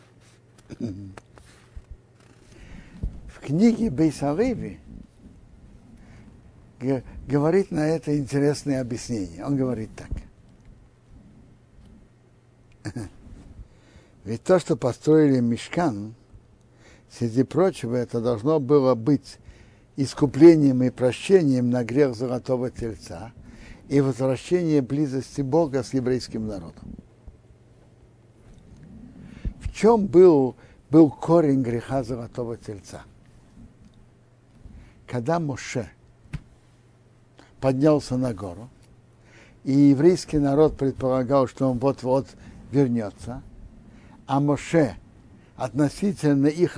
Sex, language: male, Russian